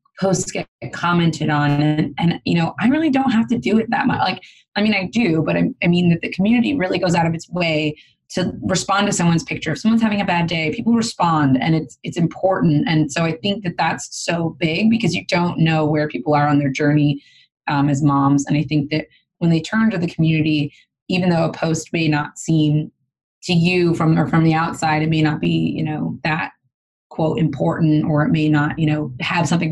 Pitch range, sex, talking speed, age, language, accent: 155-175 Hz, female, 230 wpm, 20-39, English, American